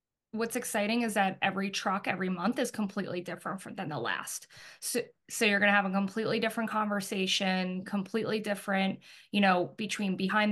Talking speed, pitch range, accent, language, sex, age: 170 wpm, 185-210 Hz, American, English, female, 20-39